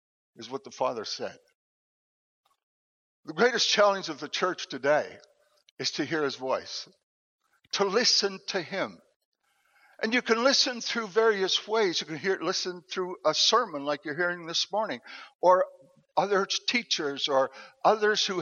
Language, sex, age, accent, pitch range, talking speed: English, male, 60-79, American, 160-220 Hz, 150 wpm